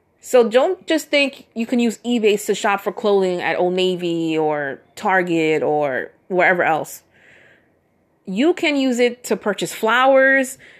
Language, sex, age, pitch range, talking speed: English, female, 30-49, 175-225 Hz, 150 wpm